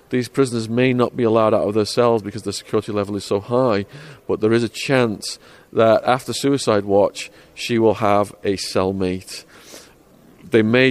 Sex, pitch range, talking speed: male, 105-125 Hz, 180 wpm